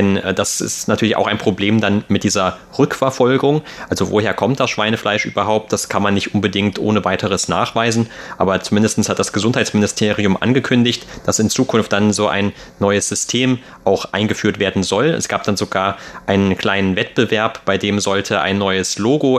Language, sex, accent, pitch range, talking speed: German, male, German, 100-110 Hz, 170 wpm